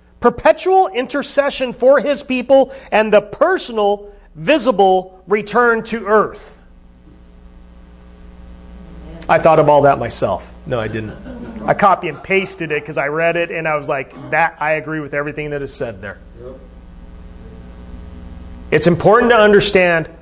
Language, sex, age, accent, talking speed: English, male, 40-59, American, 140 wpm